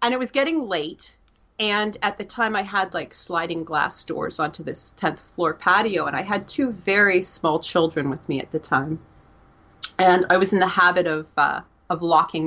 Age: 30-49